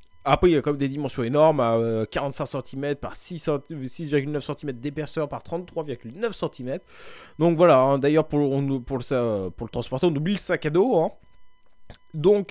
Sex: male